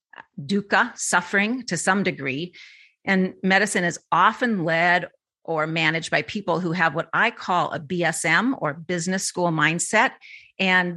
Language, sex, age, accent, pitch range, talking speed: English, female, 40-59, American, 155-195 Hz, 140 wpm